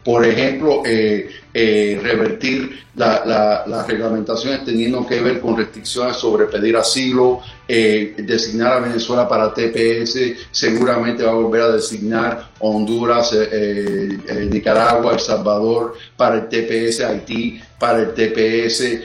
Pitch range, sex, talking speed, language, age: 115-130 Hz, male, 125 wpm, Spanish, 50-69